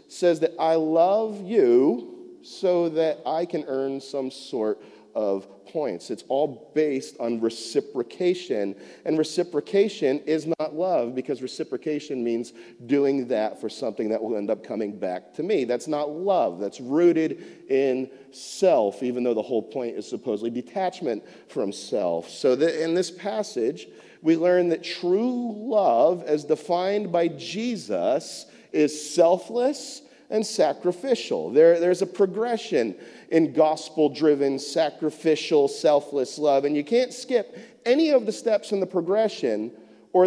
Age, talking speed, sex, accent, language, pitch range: 40-59, 140 wpm, male, American, English, 140-200 Hz